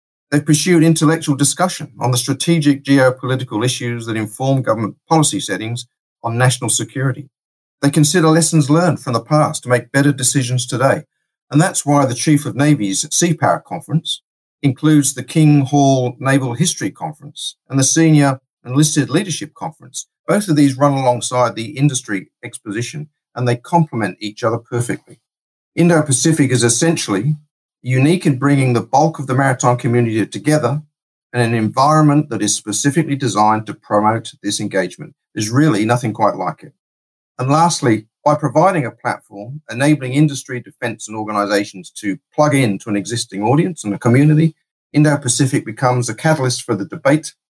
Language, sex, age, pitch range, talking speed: English, male, 50-69, 120-150 Hz, 155 wpm